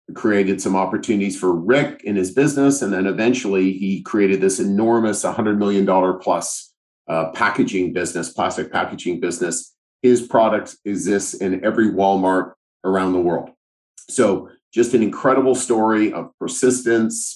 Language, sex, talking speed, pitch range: English, male, 140 wpm, 95-115 Hz